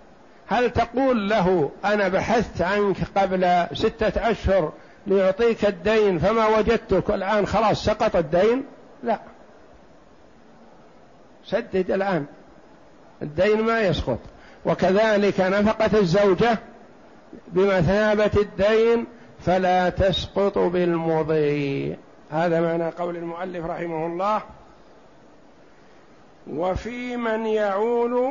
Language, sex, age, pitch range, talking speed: Arabic, male, 60-79, 180-215 Hz, 85 wpm